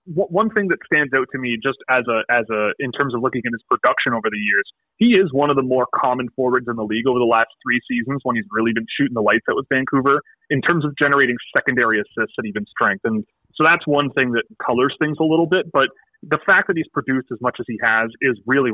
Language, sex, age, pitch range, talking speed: English, male, 30-49, 120-150 Hz, 260 wpm